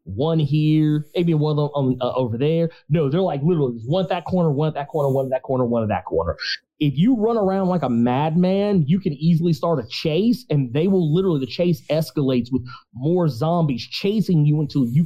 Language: English